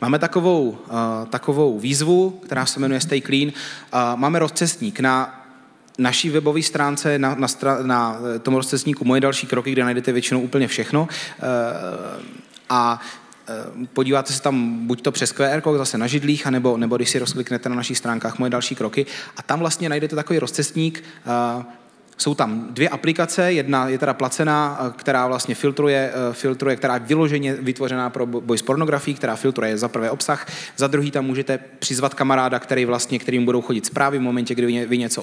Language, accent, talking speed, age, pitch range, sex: Czech, native, 180 wpm, 30-49, 125-145 Hz, male